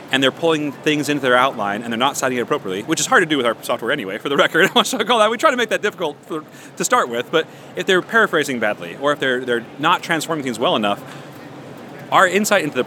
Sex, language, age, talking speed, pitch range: male, English, 40-59, 245 wpm, 130-195 Hz